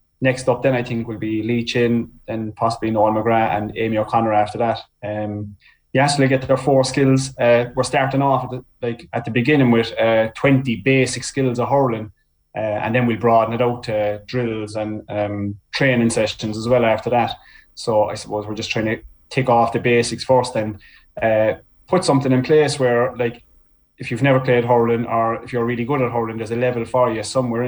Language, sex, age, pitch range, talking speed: English, male, 20-39, 110-125 Hz, 215 wpm